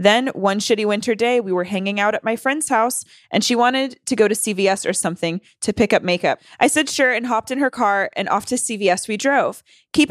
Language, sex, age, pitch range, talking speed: English, female, 20-39, 190-245 Hz, 245 wpm